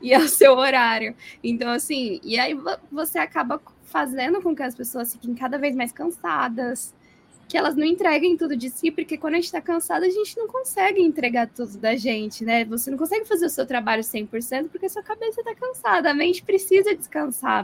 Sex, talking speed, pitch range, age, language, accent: female, 205 wpm, 230-280 Hz, 10-29, Portuguese, Brazilian